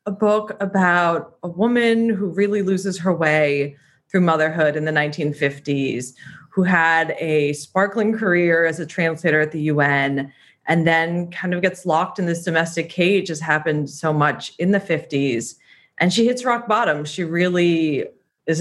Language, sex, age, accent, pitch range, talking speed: English, female, 30-49, American, 145-175 Hz, 165 wpm